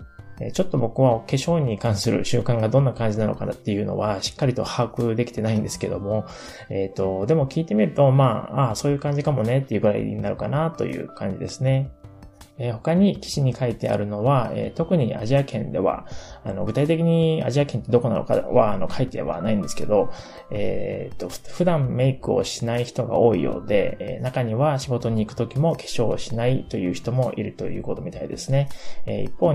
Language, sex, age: Japanese, male, 20-39